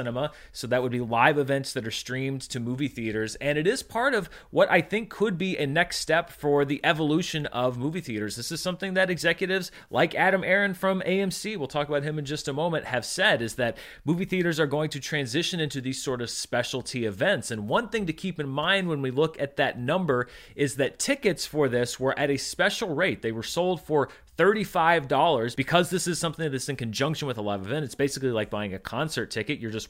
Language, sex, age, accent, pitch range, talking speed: English, male, 30-49, American, 125-175 Hz, 225 wpm